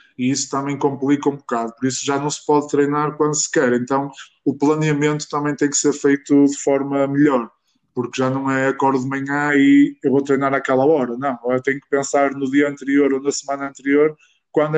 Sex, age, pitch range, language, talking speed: male, 20-39, 125-145 Hz, Portuguese, 220 wpm